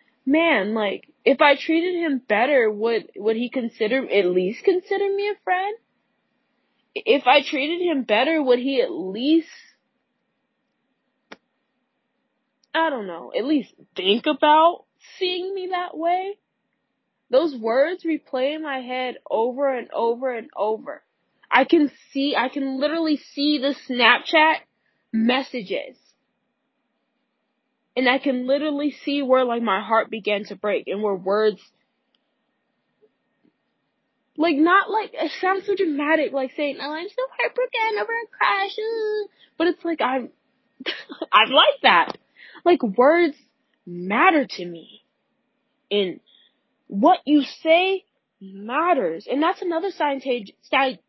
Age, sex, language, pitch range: 20-39, female, English, 245-325 Hz